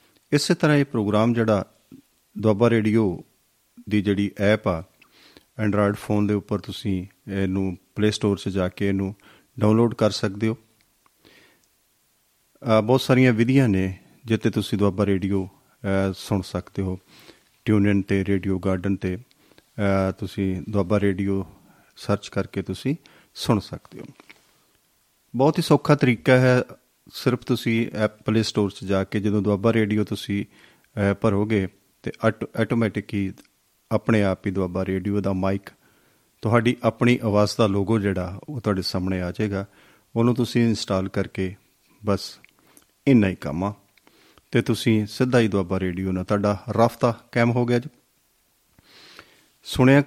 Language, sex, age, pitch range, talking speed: Punjabi, male, 40-59, 100-115 Hz, 125 wpm